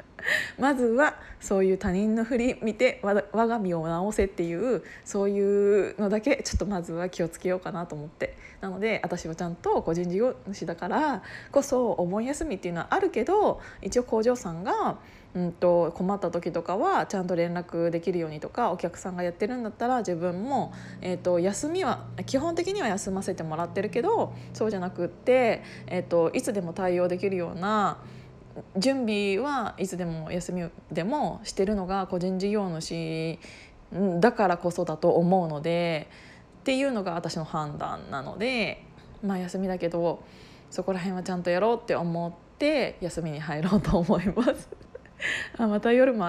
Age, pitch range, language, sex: 20-39, 175-220 Hz, Japanese, female